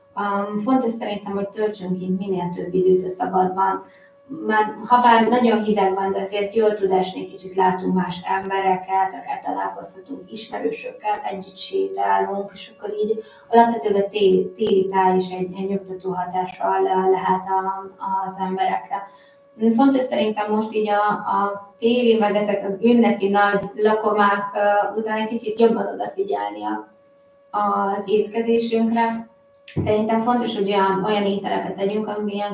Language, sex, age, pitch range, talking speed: Hungarian, female, 20-39, 190-225 Hz, 145 wpm